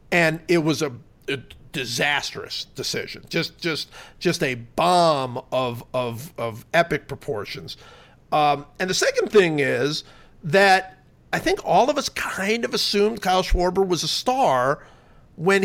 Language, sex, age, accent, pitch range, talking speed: English, male, 50-69, American, 145-195 Hz, 145 wpm